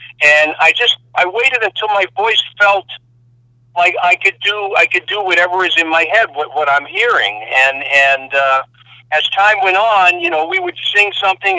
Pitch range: 135-180 Hz